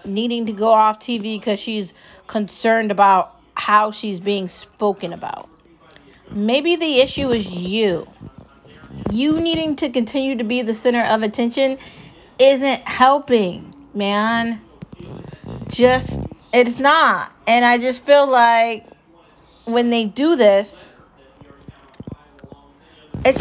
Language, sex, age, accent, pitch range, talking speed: English, female, 40-59, American, 200-250 Hz, 115 wpm